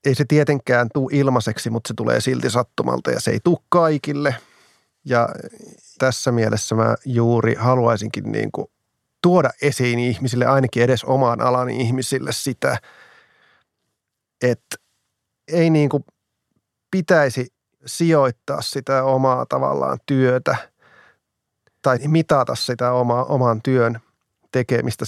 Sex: male